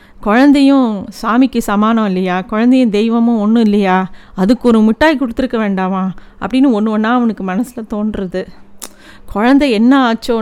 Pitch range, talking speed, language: 210-250 Hz, 125 wpm, Tamil